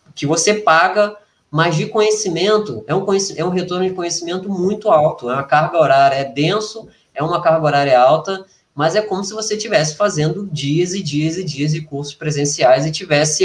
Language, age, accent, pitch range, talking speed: Portuguese, 20-39, Brazilian, 155-200 Hz, 195 wpm